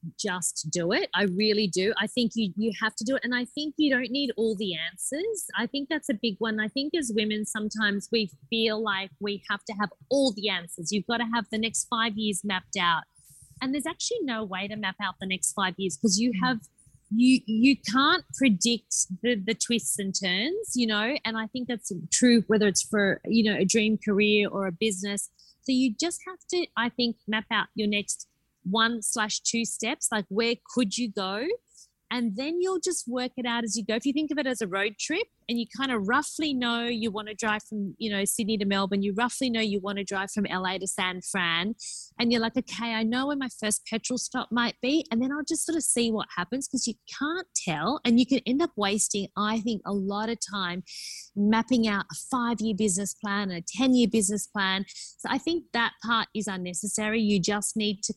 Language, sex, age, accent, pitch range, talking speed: English, female, 30-49, Australian, 200-245 Hz, 230 wpm